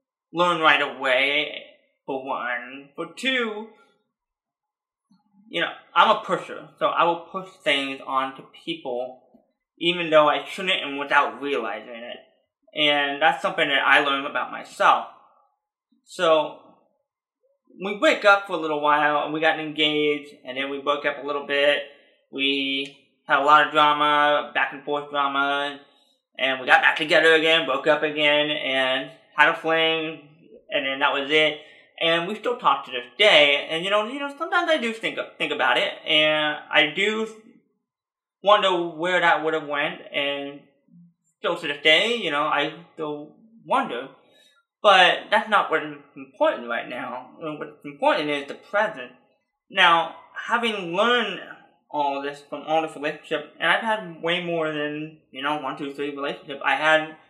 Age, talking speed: 20-39, 165 wpm